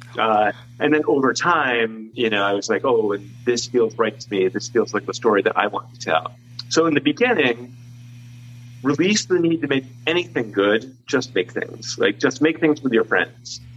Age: 40-59